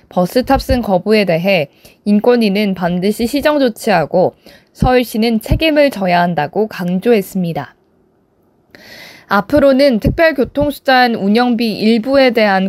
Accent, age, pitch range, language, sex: native, 20-39, 190-240 Hz, Korean, female